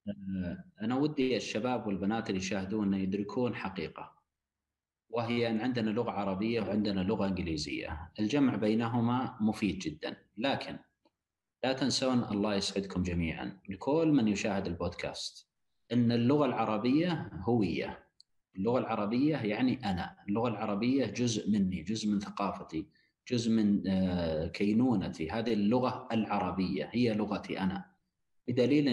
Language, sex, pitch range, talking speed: Arabic, male, 95-125 Hz, 115 wpm